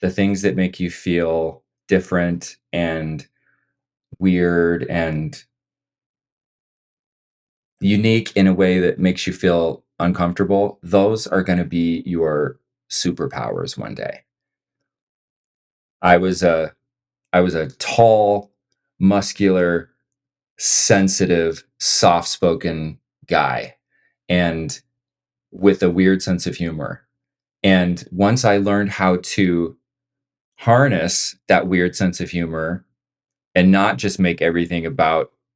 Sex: male